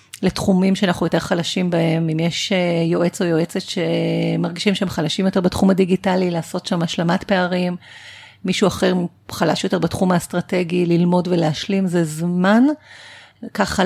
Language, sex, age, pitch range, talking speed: Hebrew, female, 40-59, 170-205 Hz, 135 wpm